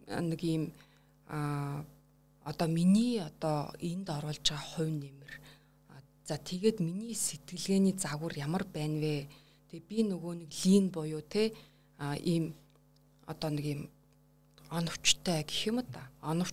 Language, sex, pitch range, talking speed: Russian, female, 160-200 Hz, 90 wpm